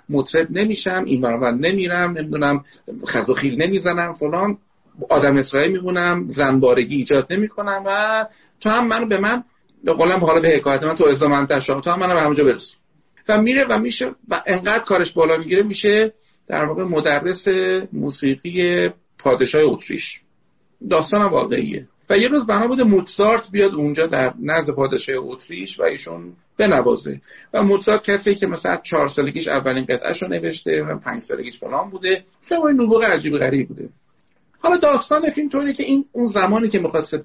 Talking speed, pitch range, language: 165 wpm, 145-215 Hz, Persian